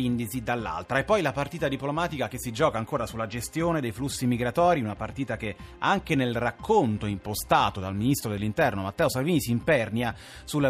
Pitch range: 115-145 Hz